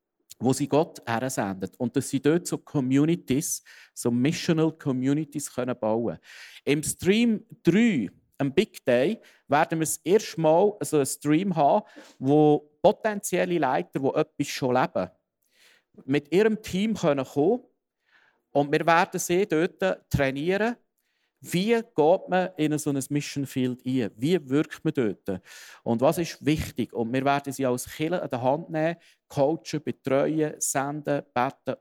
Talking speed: 150 wpm